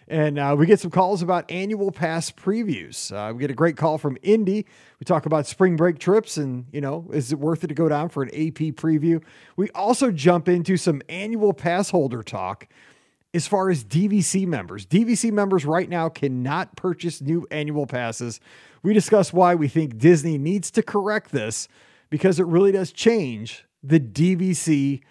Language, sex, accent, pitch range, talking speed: English, male, American, 150-205 Hz, 185 wpm